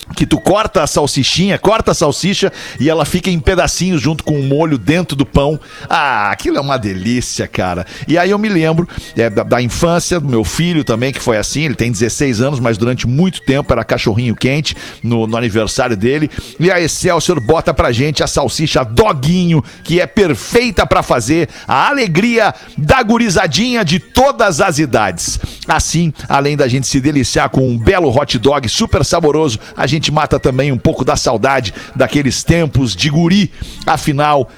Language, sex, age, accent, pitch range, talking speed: Portuguese, male, 50-69, Brazilian, 130-175 Hz, 185 wpm